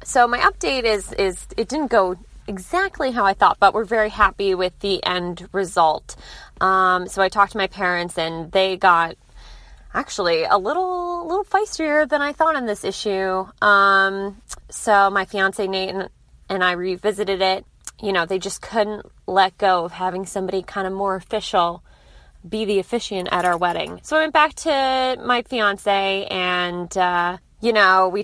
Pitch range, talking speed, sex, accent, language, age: 190-245 Hz, 175 wpm, female, American, English, 20-39